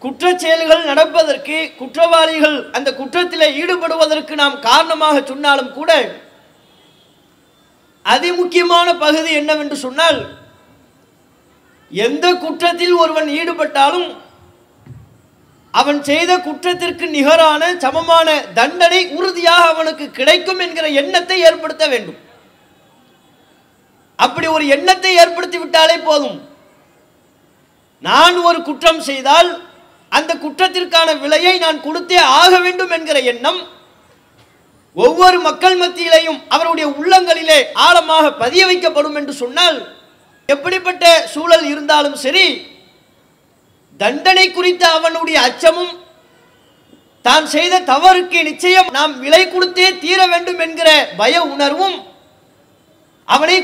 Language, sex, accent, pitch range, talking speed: English, male, Indian, 300-350 Hz, 105 wpm